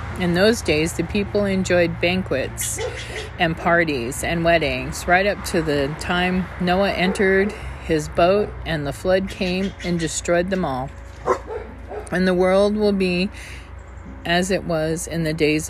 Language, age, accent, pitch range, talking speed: English, 40-59, American, 145-180 Hz, 150 wpm